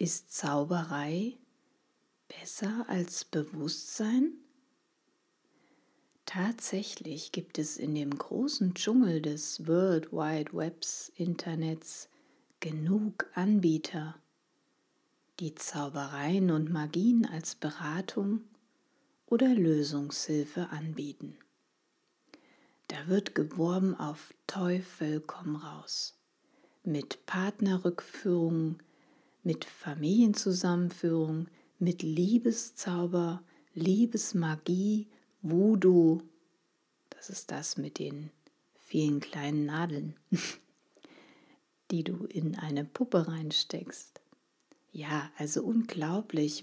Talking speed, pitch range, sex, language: 75 wpm, 155-220 Hz, female, German